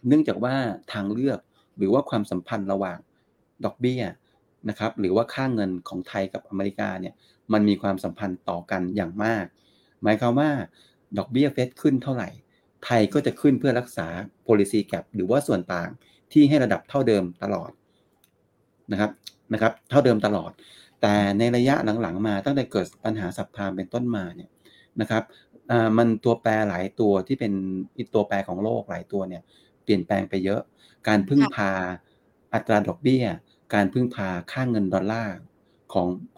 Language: Thai